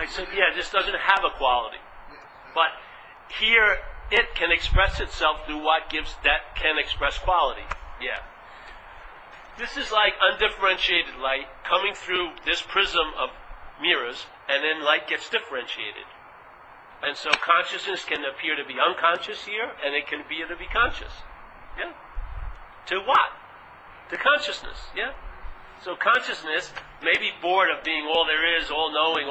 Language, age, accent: English, 50-69, American